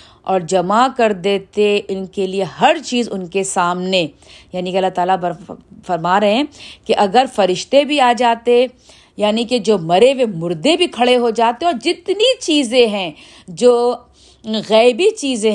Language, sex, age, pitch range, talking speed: Urdu, female, 50-69, 190-250 Hz, 160 wpm